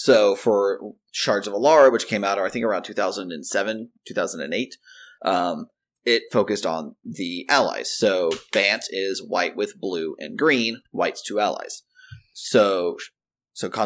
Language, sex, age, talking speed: English, male, 30-49, 135 wpm